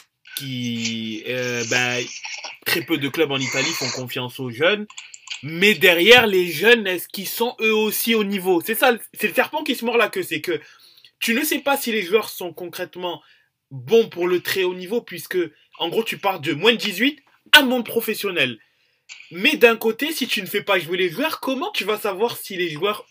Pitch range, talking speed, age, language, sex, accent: 145-230 Hz, 210 wpm, 20-39, French, male, French